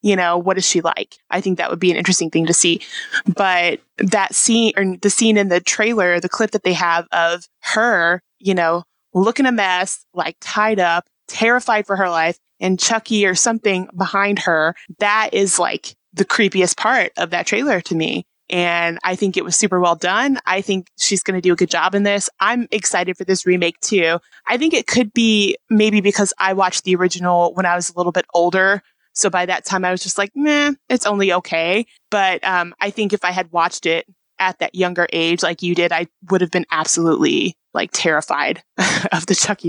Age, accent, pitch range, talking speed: 20-39, American, 175-205 Hz, 215 wpm